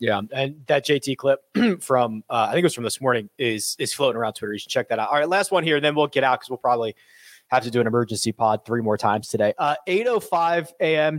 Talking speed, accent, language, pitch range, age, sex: 270 wpm, American, English, 135-175 Hz, 30-49, male